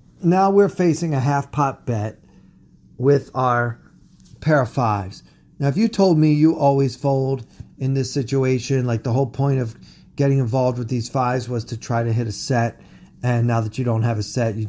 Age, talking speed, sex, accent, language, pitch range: 40-59, 200 wpm, male, American, English, 120-145 Hz